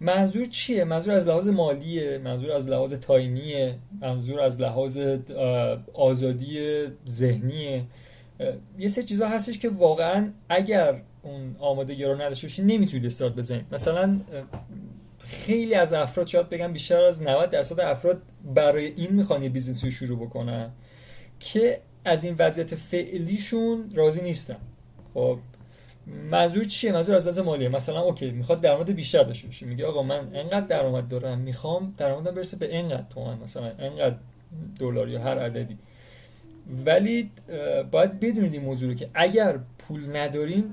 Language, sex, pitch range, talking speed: Persian, male, 130-185 Hz, 140 wpm